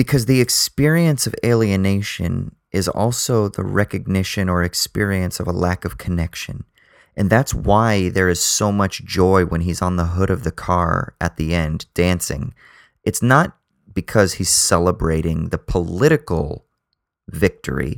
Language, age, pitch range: English, 30-49, 90-105 Hz